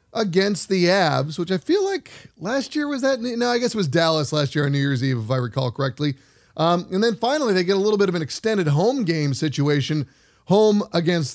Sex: male